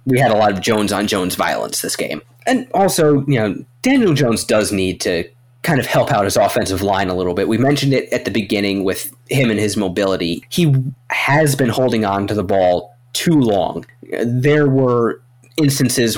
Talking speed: 195 wpm